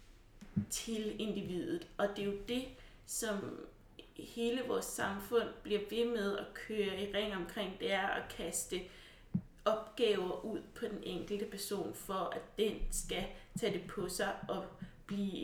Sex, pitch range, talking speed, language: female, 175-225 Hz, 150 wpm, Danish